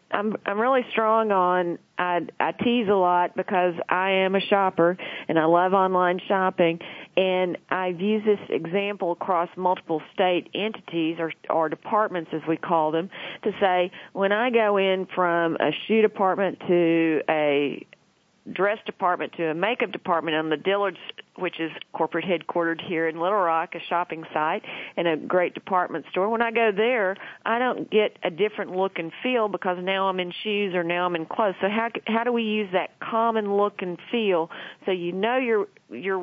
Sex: female